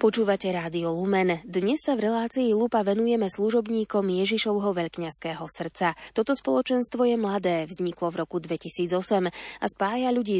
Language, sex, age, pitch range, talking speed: Slovak, female, 20-39, 175-230 Hz, 140 wpm